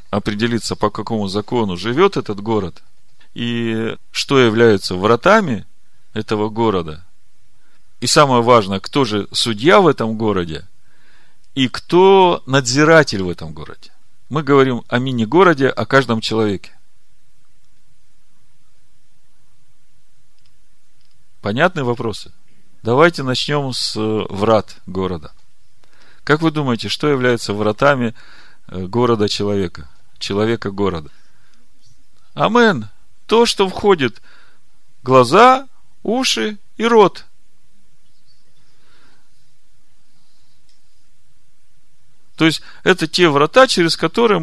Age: 40-59